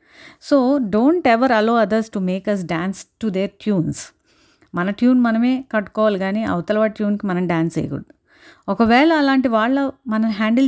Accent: native